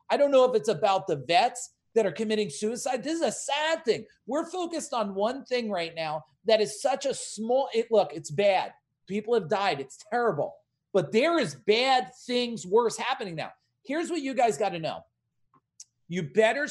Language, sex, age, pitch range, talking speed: English, male, 40-59, 205-280 Hz, 195 wpm